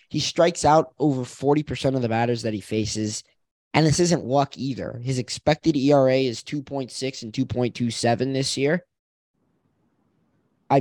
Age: 20-39